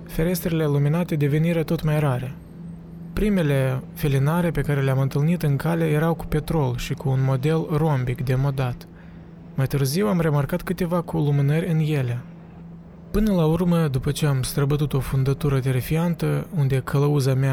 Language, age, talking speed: Romanian, 20-39, 155 wpm